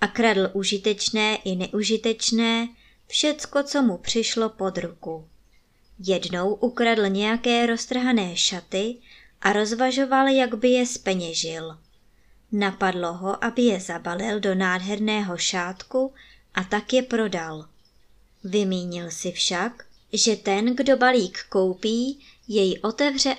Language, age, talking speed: Czech, 20-39, 115 wpm